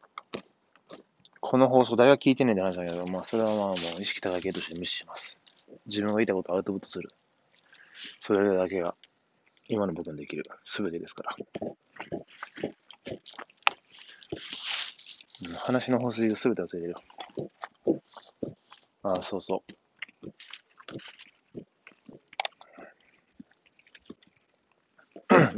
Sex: male